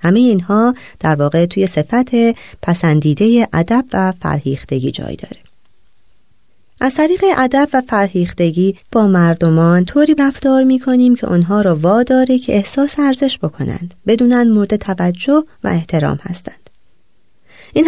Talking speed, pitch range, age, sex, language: 125 wpm, 160-240 Hz, 30-49, female, Persian